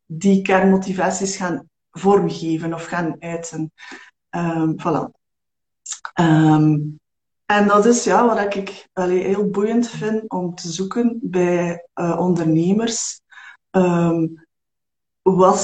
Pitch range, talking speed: 185-220 Hz, 105 wpm